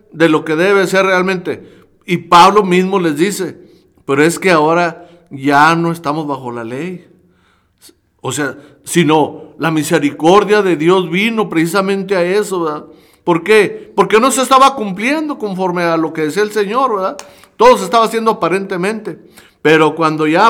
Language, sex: Spanish, male